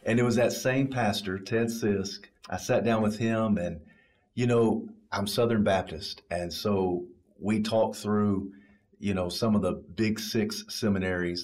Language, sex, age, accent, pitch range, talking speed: English, male, 40-59, American, 95-115 Hz, 170 wpm